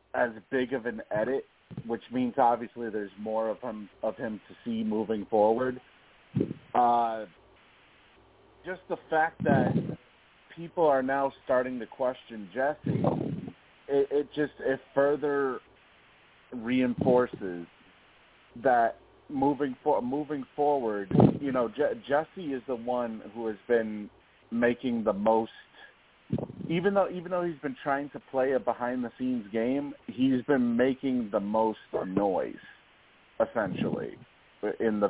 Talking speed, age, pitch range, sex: 130 wpm, 40-59, 115-140 Hz, male